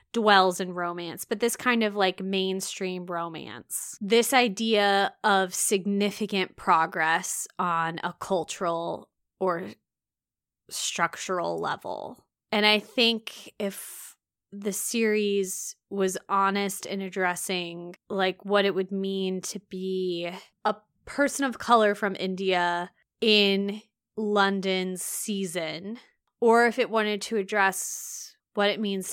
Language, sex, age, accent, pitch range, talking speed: English, female, 20-39, American, 185-215 Hz, 115 wpm